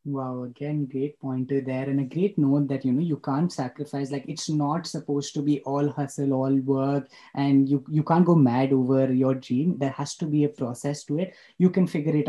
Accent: Indian